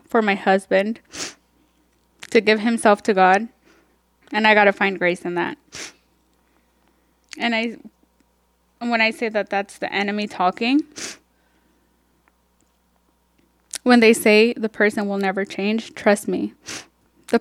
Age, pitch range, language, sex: 10-29, 200-255 Hz, English, female